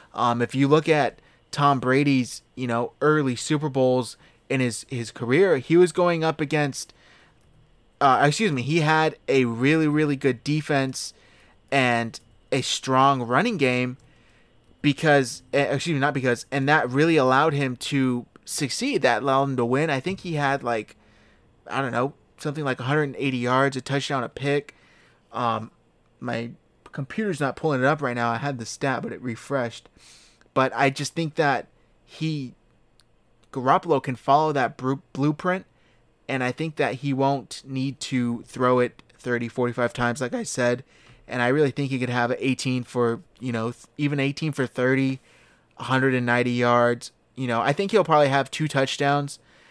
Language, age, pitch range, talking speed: English, 20-39, 120-145 Hz, 165 wpm